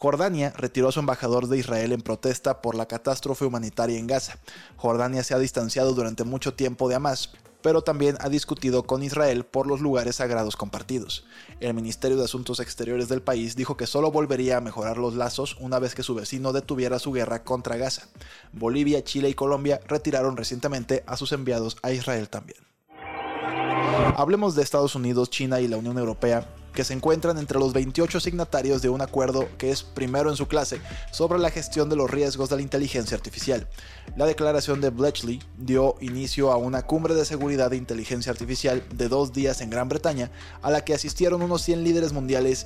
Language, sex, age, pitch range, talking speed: Spanish, male, 20-39, 125-145 Hz, 190 wpm